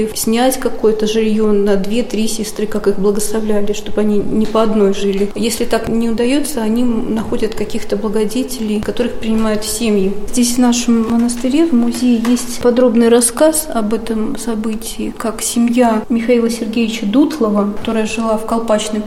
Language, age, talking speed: Russian, 20-39, 150 wpm